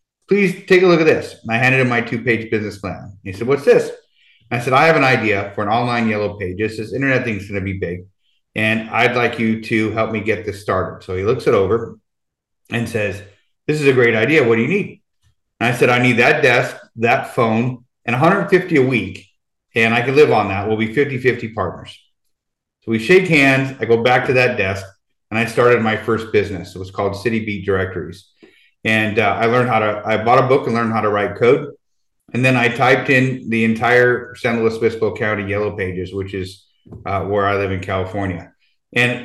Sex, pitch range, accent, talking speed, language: male, 105-125 Hz, American, 225 wpm, English